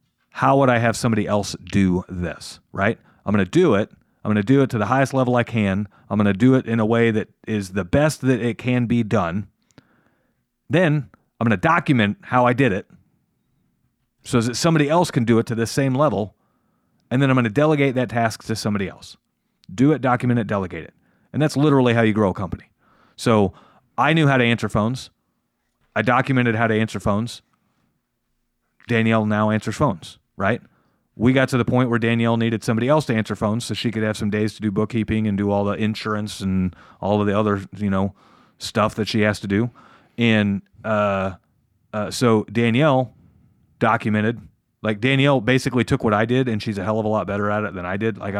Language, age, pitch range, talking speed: English, 40-59, 105-125 Hz, 215 wpm